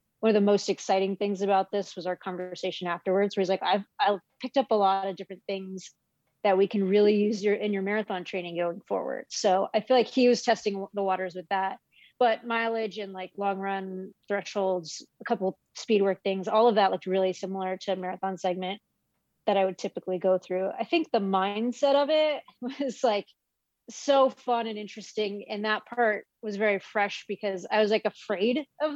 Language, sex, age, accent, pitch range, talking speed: English, female, 30-49, American, 190-230 Hz, 205 wpm